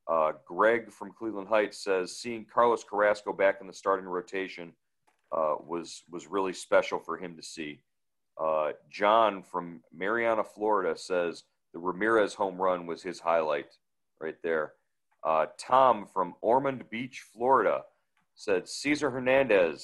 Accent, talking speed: American, 140 wpm